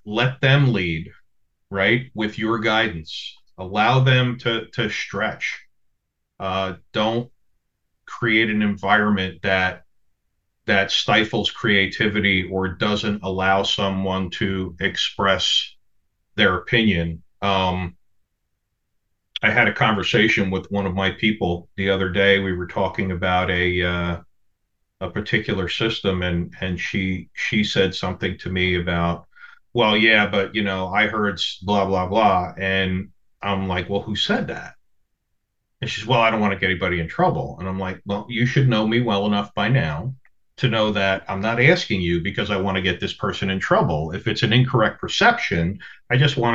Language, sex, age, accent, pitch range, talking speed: English, male, 40-59, American, 95-110 Hz, 160 wpm